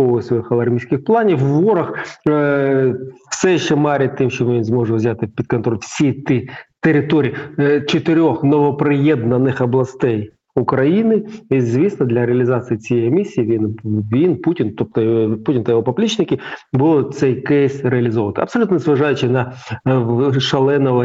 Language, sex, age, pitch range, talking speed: Ukrainian, male, 40-59, 120-150 Hz, 120 wpm